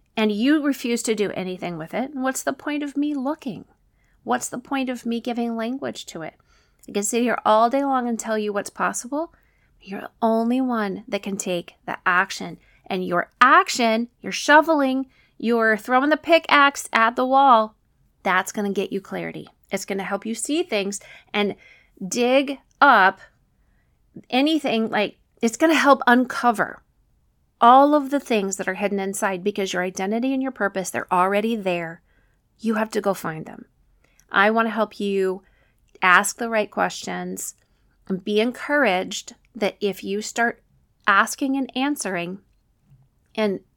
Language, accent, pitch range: English, American, 195-255 Hz